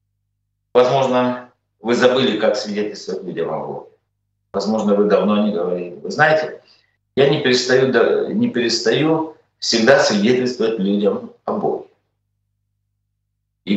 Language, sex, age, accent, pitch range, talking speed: Russian, male, 50-69, native, 100-155 Hz, 115 wpm